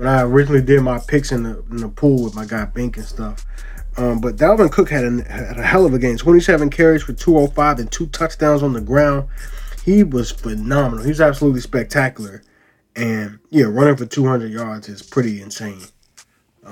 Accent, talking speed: American, 190 wpm